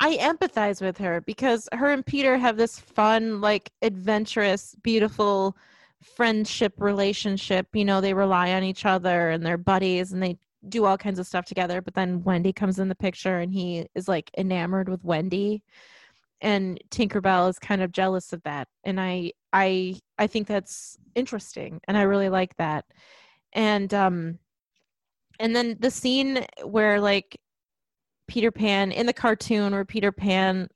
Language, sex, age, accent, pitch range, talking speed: English, female, 20-39, American, 185-220 Hz, 165 wpm